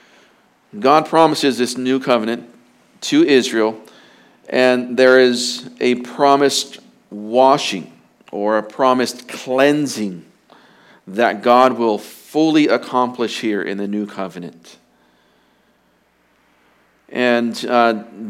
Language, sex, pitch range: English, male, 105-130 Hz